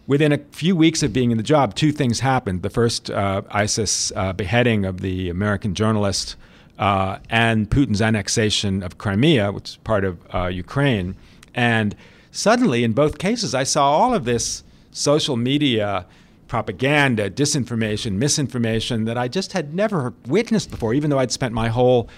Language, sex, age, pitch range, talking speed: English, male, 50-69, 105-130 Hz, 170 wpm